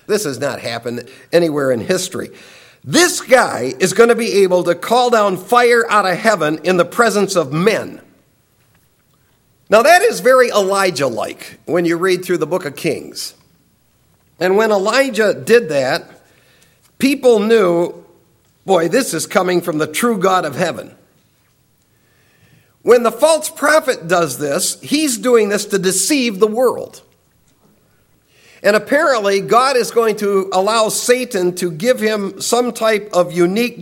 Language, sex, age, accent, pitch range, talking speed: English, male, 50-69, American, 175-230 Hz, 150 wpm